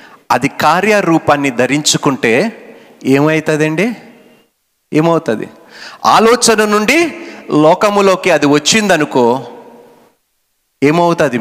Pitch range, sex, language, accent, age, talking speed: 130-205 Hz, male, Telugu, native, 50-69, 60 wpm